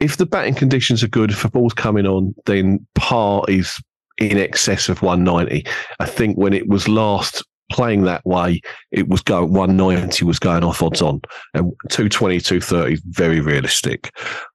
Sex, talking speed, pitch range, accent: male, 165 wpm, 90-110 Hz, British